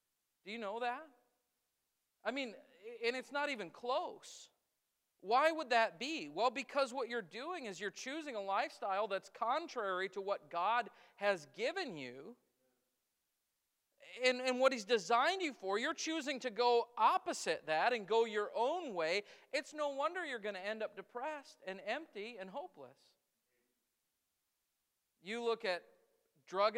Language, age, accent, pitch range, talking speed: English, 40-59, American, 190-250 Hz, 150 wpm